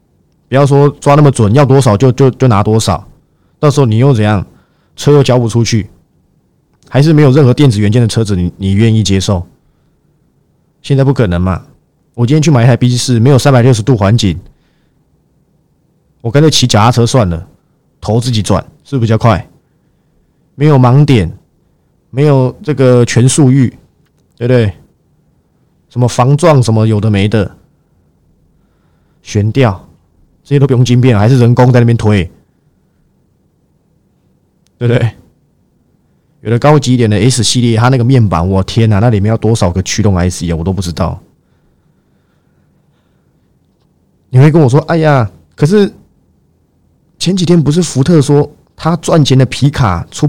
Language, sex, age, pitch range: Chinese, male, 20-39, 105-140 Hz